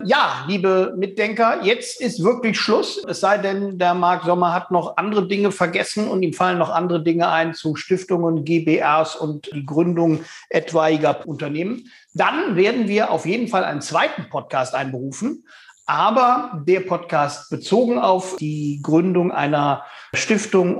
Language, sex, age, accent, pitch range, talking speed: German, male, 50-69, German, 155-195 Hz, 150 wpm